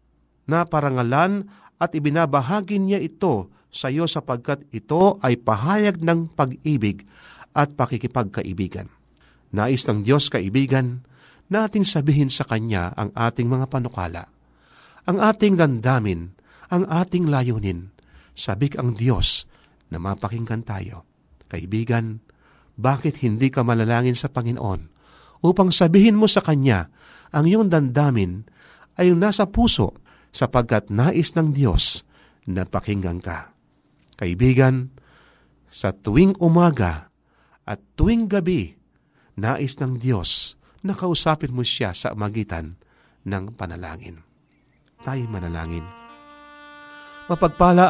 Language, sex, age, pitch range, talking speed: Filipino, male, 40-59, 105-170 Hz, 110 wpm